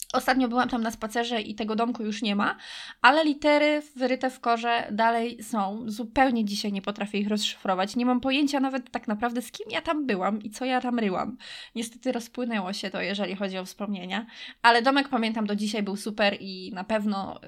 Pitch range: 205-245 Hz